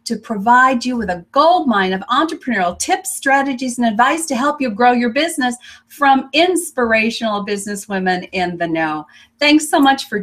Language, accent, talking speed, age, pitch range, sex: English, American, 165 wpm, 40-59, 195-245 Hz, female